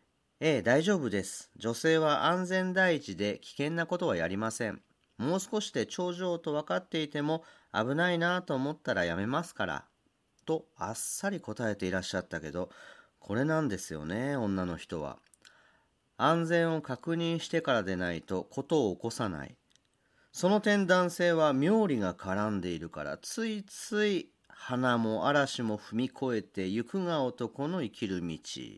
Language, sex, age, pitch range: Japanese, male, 40-59, 110-165 Hz